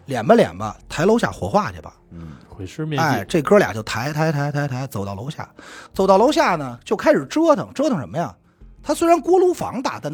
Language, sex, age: Chinese, male, 30-49